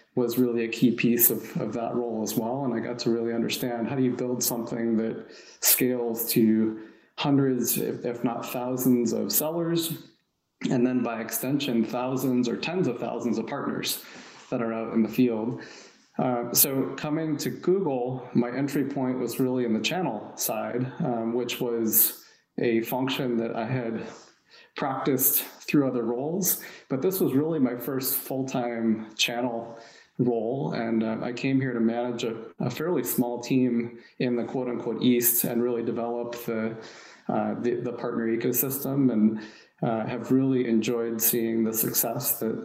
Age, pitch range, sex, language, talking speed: 30-49, 115-125 Hz, male, English, 165 wpm